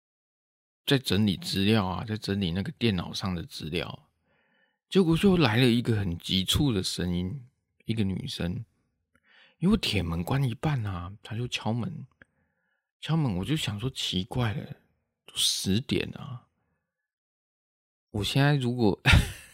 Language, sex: Chinese, male